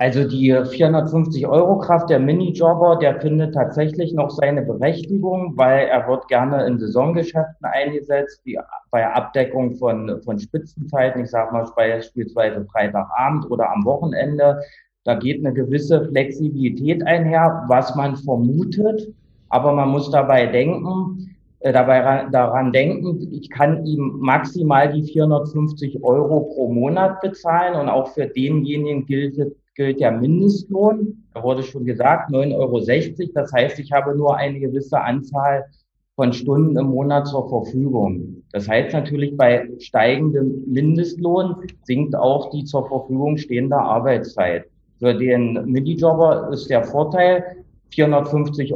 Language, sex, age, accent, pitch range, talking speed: German, male, 30-49, German, 130-160 Hz, 140 wpm